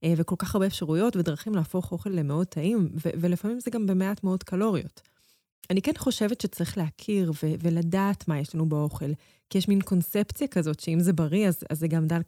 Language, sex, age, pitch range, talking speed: English, female, 30-49, 160-190 Hz, 170 wpm